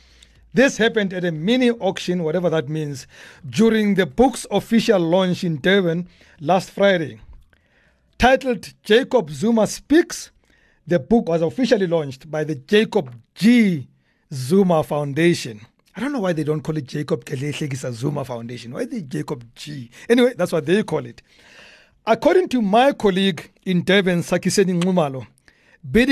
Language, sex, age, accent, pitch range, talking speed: English, male, 60-79, South African, 155-215 Hz, 145 wpm